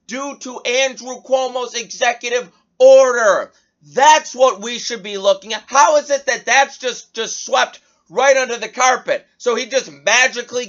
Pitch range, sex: 190-270 Hz, male